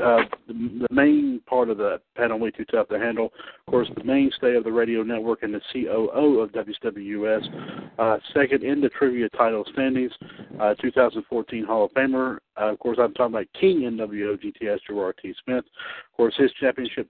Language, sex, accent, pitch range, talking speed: English, male, American, 110-130 Hz, 190 wpm